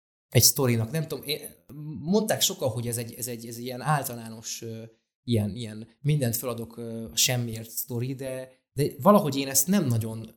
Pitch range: 120-150 Hz